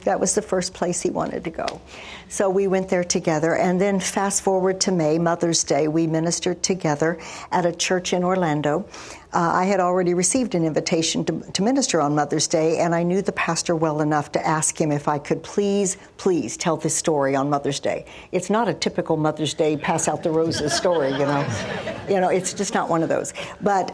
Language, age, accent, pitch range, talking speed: English, 60-79, American, 160-185 Hz, 215 wpm